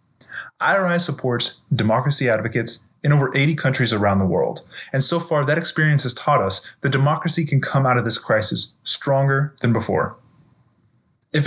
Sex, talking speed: male, 160 wpm